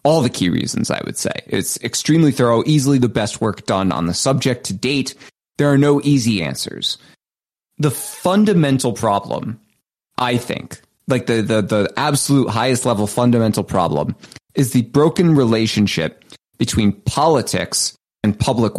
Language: English